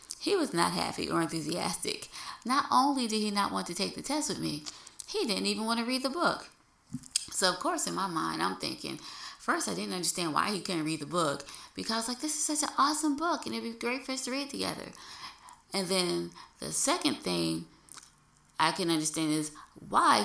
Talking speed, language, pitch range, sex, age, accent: 215 wpm, English, 160-235 Hz, female, 20-39, American